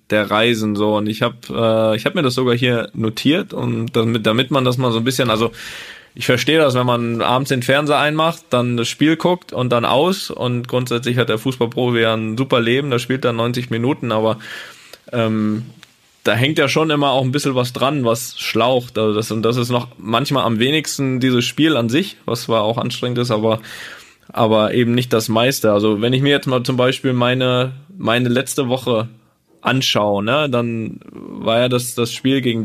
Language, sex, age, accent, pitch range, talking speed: German, male, 20-39, German, 115-135 Hz, 210 wpm